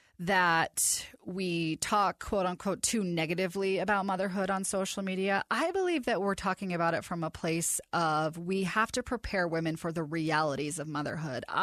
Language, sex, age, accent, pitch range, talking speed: English, female, 30-49, American, 175-255 Hz, 170 wpm